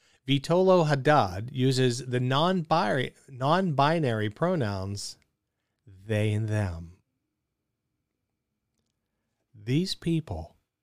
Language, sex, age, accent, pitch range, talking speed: English, male, 50-69, American, 110-145 Hz, 60 wpm